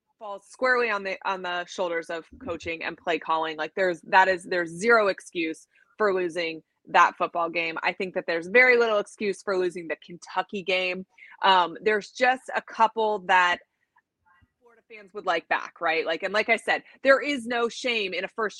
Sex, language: female, English